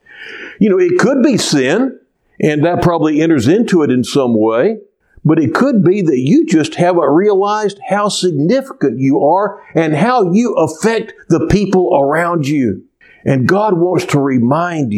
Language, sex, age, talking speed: English, male, 60-79, 165 wpm